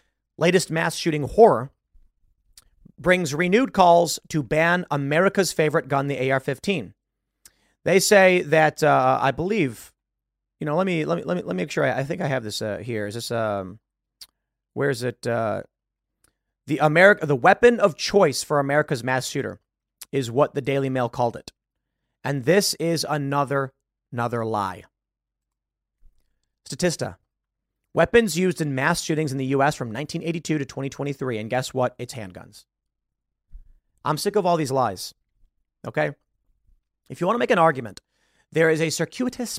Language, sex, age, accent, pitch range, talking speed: English, male, 30-49, American, 130-175 Hz, 160 wpm